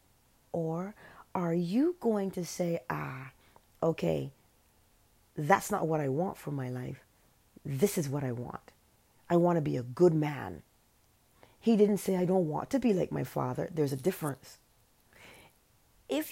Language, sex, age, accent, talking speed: English, female, 40-59, American, 160 wpm